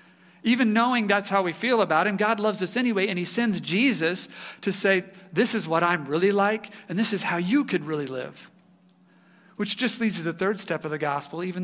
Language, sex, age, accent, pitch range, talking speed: English, male, 50-69, American, 175-220 Hz, 220 wpm